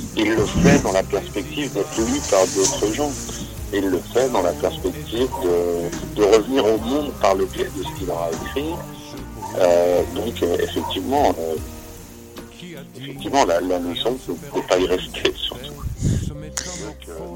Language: French